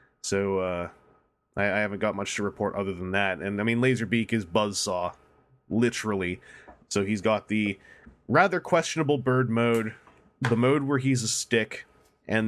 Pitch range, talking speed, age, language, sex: 100-120 Hz, 165 wpm, 20-39, English, male